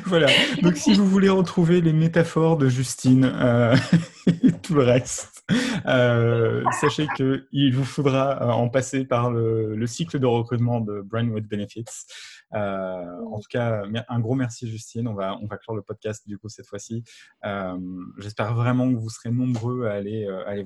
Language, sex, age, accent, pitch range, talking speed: French, male, 20-39, French, 95-120 Hz, 175 wpm